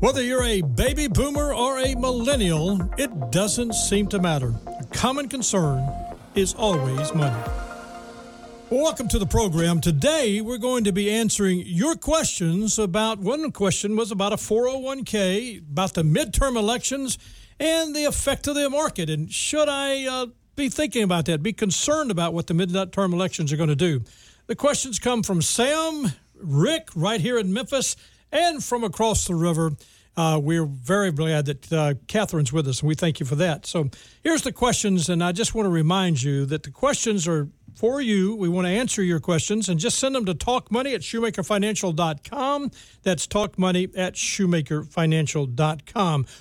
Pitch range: 165-245 Hz